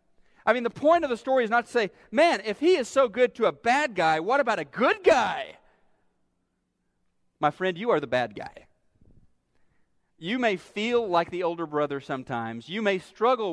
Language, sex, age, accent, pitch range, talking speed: English, male, 40-59, American, 130-185 Hz, 195 wpm